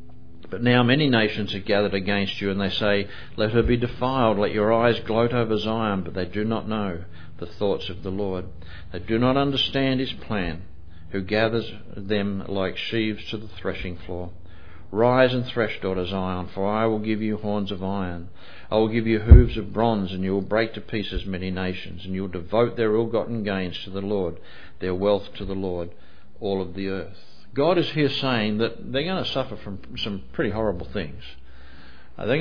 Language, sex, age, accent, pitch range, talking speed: English, male, 50-69, Australian, 95-115 Hz, 200 wpm